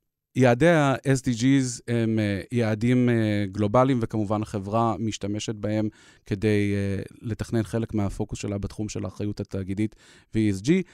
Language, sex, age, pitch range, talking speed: Hebrew, male, 30-49, 100-115 Hz, 105 wpm